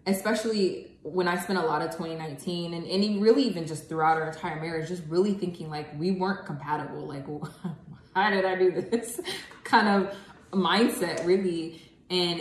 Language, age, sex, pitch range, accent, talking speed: English, 20-39, female, 155-180 Hz, American, 170 wpm